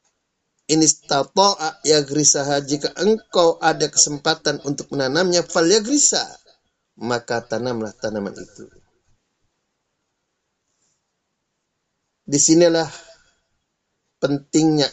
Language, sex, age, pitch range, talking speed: Indonesian, male, 30-49, 135-160 Hz, 70 wpm